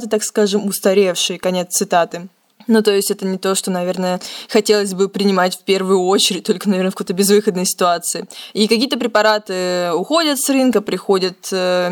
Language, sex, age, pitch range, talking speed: Russian, female, 20-39, 190-225 Hz, 160 wpm